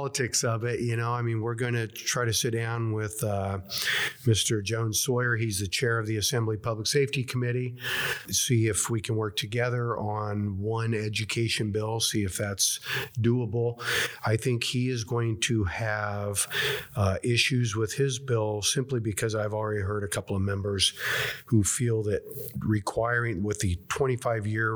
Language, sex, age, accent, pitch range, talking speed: English, male, 50-69, American, 100-120 Hz, 170 wpm